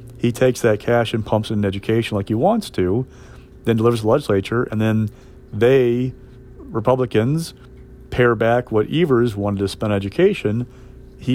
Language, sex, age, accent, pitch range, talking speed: English, male, 40-59, American, 105-125 Hz, 165 wpm